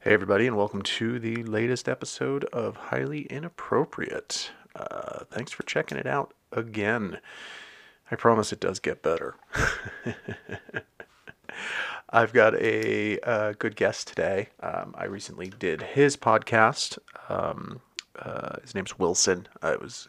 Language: English